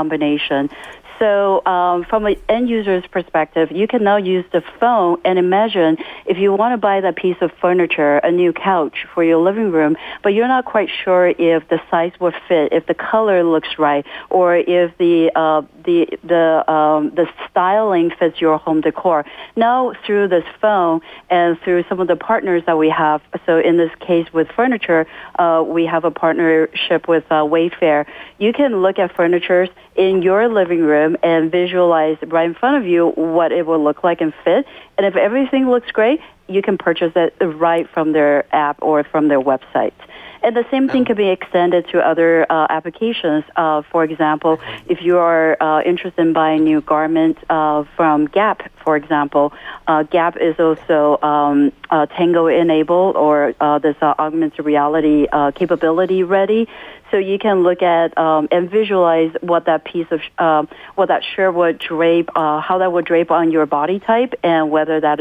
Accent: American